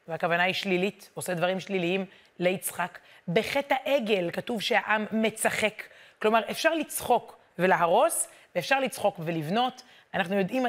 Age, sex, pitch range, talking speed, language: 30-49, female, 190-255 Hz, 120 wpm, Hebrew